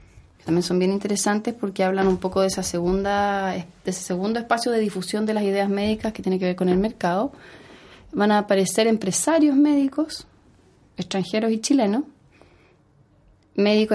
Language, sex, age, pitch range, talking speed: Spanish, female, 20-39, 185-235 Hz, 160 wpm